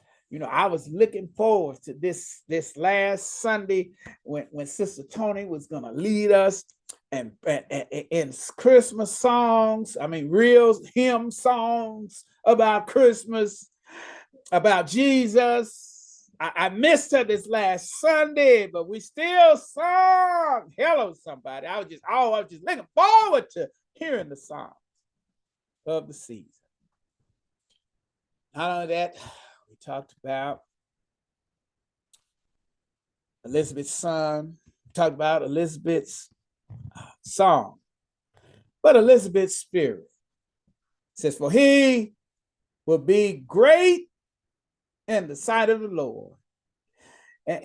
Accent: American